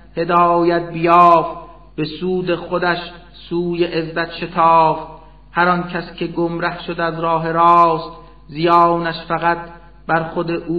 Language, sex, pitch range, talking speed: Persian, male, 160-170 Hz, 115 wpm